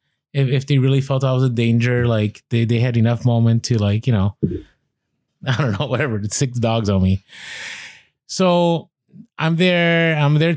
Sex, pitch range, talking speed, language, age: male, 120-155 Hz, 185 wpm, English, 30-49